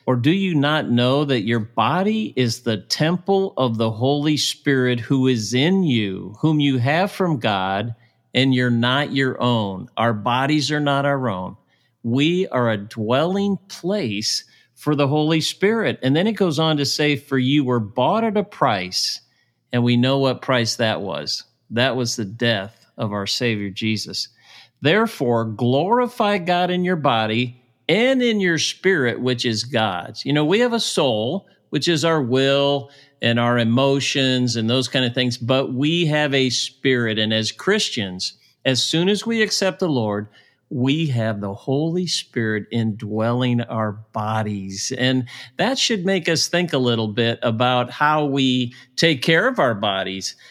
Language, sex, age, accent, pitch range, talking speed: English, male, 50-69, American, 115-155 Hz, 170 wpm